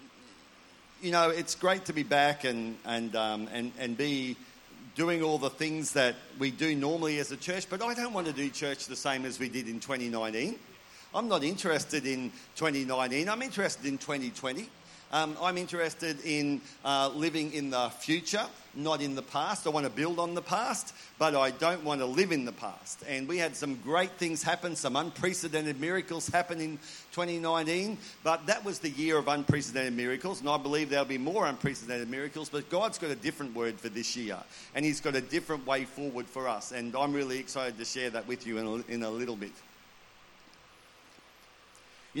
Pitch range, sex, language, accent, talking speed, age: 125-155 Hz, male, English, Australian, 195 wpm, 50-69